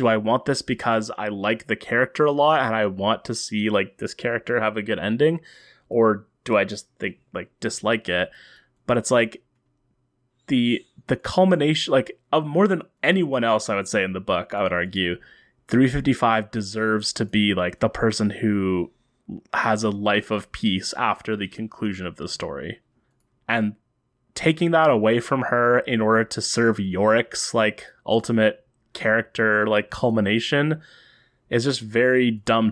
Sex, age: male, 20-39